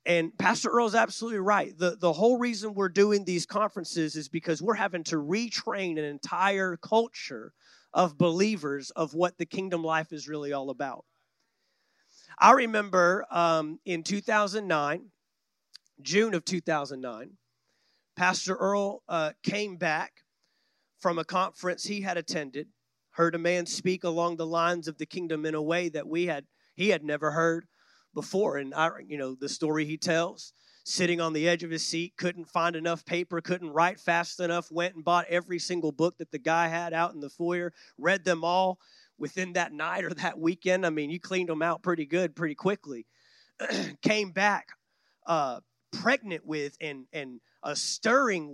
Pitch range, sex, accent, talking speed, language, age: 160-195 Hz, male, American, 170 wpm, English, 40-59